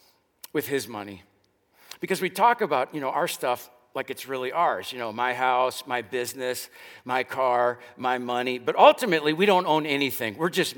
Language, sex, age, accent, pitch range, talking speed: English, male, 50-69, American, 125-180 Hz, 185 wpm